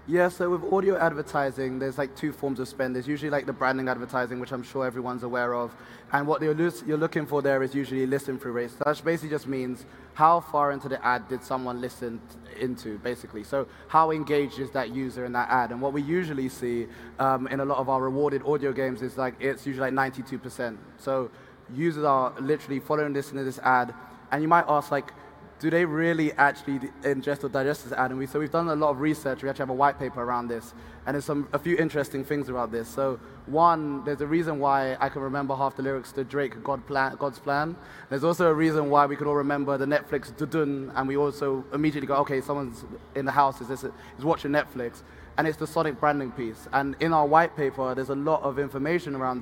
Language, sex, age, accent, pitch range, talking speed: English, male, 20-39, British, 130-145 Hz, 230 wpm